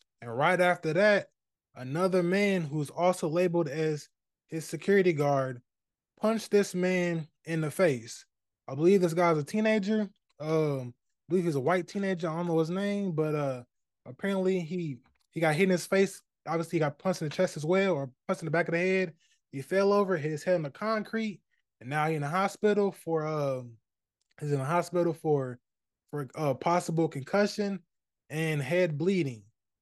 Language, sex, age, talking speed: English, male, 20-39, 190 wpm